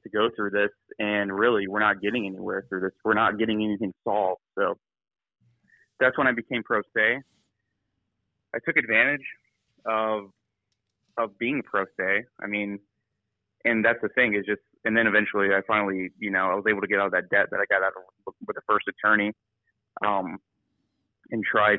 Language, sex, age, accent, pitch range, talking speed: English, male, 20-39, American, 100-115 Hz, 185 wpm